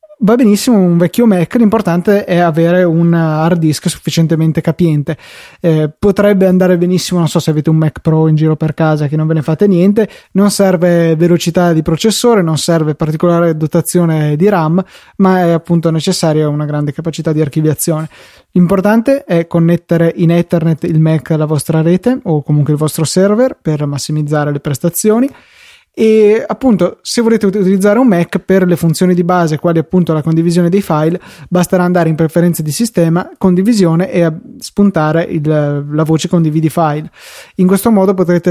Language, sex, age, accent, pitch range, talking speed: Italian, male, 20-39, native, 160-185 Hz, 170 wpm